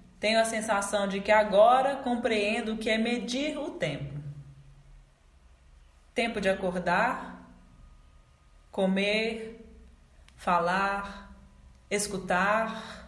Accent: Brazilian